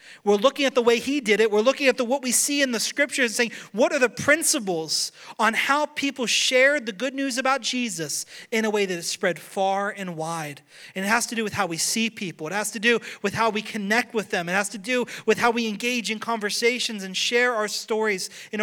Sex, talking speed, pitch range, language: male, 250 wpm, 185-230 Hz, English